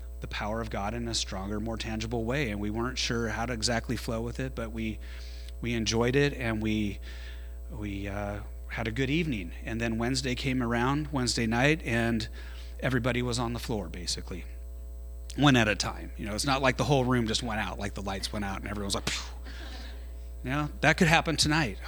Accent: American